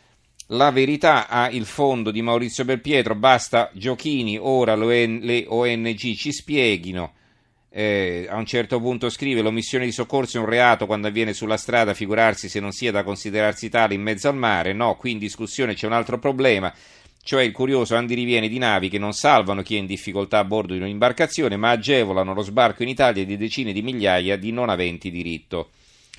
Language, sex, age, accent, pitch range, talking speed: Italian, male, 40-59, native, 105-125 Hz, 185 wpm